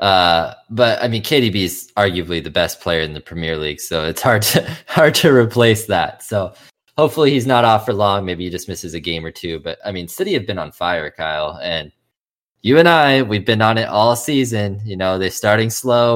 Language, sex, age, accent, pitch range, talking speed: English, male, 20-39, American, 90-120 Hz, 225 wpm